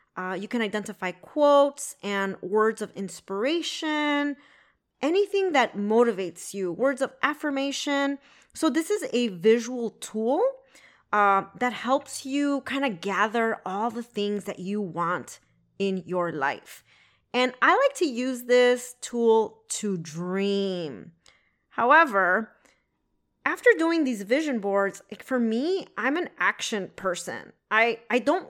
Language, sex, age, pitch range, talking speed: English, female, 30-49, 200-270 Hz, 130 wpm